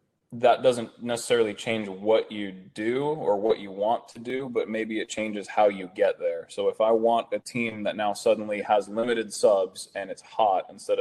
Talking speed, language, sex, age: 200 wpm, English, male, 20-39